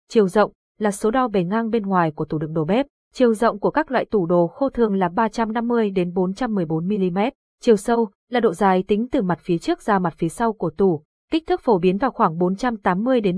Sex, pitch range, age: female, 180-230 Hz, 20-39